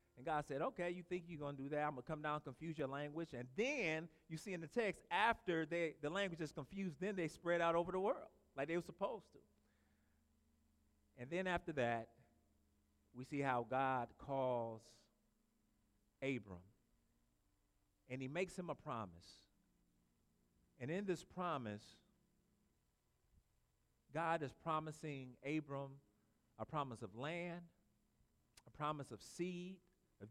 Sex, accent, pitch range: male, American, 110-165 Hz